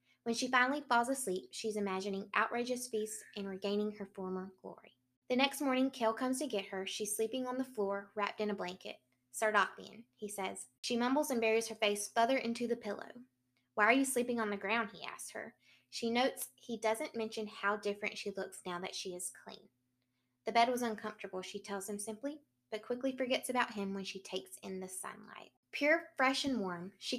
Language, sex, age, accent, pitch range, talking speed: English, female, 20-39, American, 190-230 Hz, 205 wpm